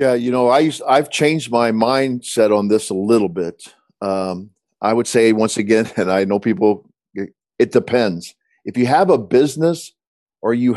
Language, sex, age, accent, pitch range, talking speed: English, male, 50-69, American, 100-125 Hz, 185 wpm